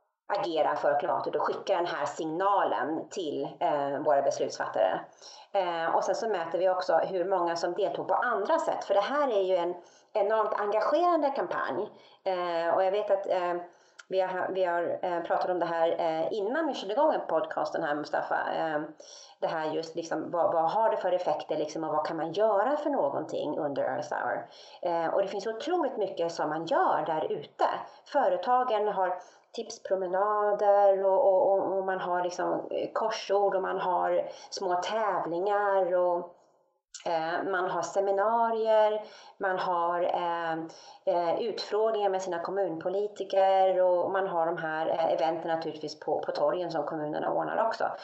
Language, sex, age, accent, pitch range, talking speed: English, female, 30-49, Swedish, 170-210 Hz, 165 wpm